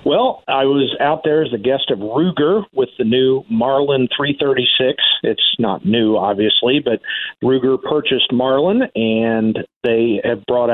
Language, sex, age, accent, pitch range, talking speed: English, male, 50-69, American, 115-155 Hz, 150 wpm